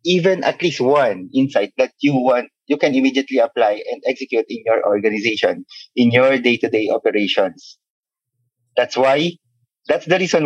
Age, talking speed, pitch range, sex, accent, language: 20-39, 150 wpm, 120-160 Hz, male, native, Filipino